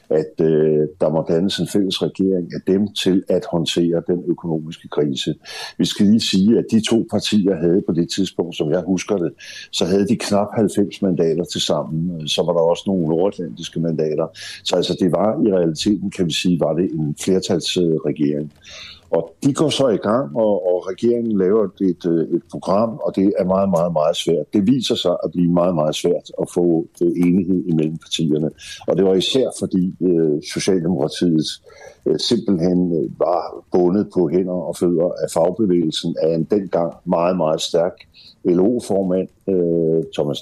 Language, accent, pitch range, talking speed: Danish, native, 80-100 Hz, 175 wpm